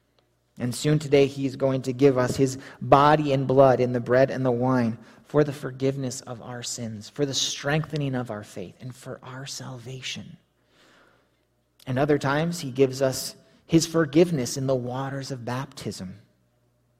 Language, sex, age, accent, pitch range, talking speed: English, male, 30-49, American, 100-140 Hz, 165 wpm